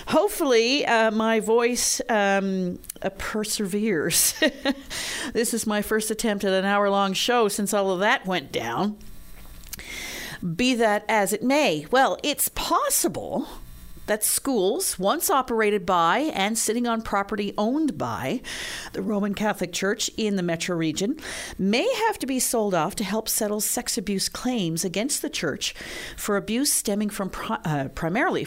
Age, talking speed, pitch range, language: 50-69, 150 wpm, 180-245 Hz, English